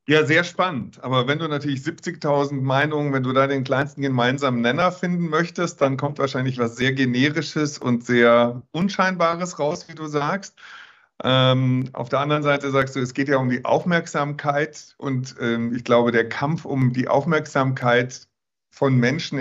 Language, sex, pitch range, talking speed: German, male, 125-145 Hz, 170 wpm